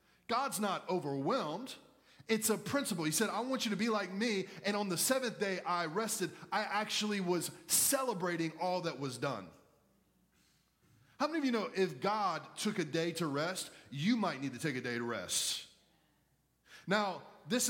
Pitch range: 165-210 Hz